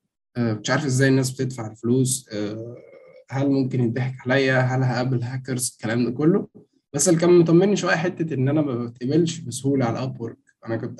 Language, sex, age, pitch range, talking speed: Arabic, male, 20-39, 120-165 Hz, 175 wpm